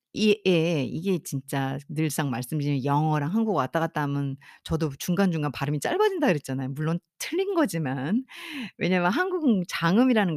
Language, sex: Korean, female